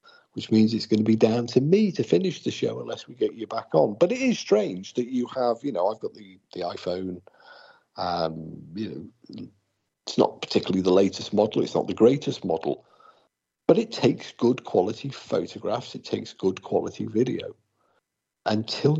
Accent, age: British, 50-69